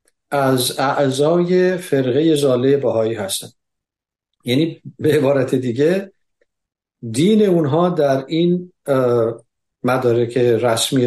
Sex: male